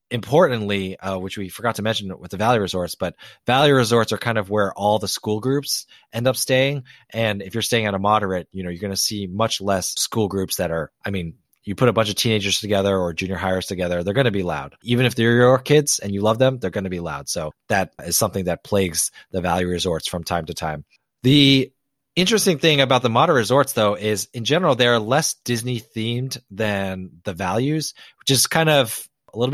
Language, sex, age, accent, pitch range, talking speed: English, male, 30-49, American, 100-125 Hz, 230 wpm